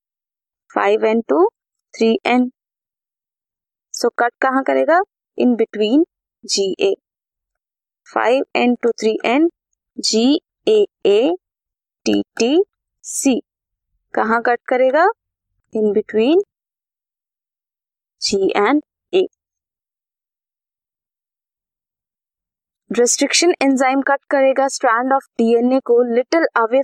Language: Hindi